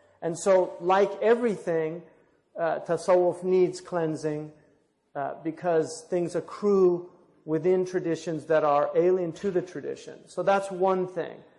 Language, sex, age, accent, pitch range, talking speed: English, male, 40-59, American, 155-195 Hz, 125 wpm